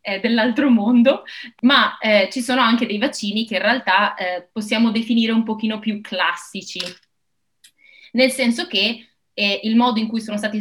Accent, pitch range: native, 195-240 Hz